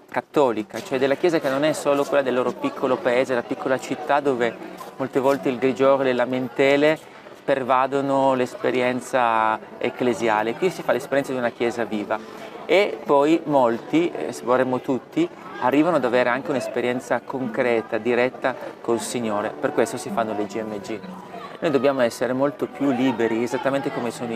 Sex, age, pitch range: male, 30-49, 115-140 Hz